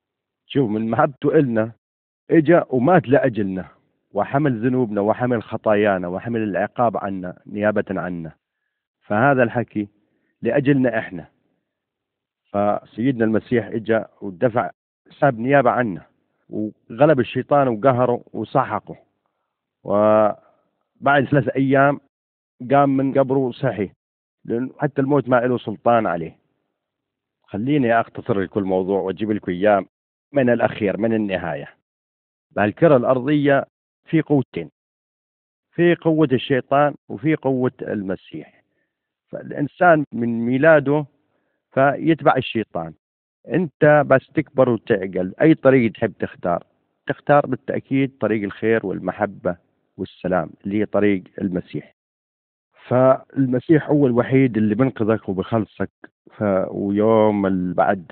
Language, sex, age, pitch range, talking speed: Arabic, male, 40-59, 100-140 Hz, 100 wpm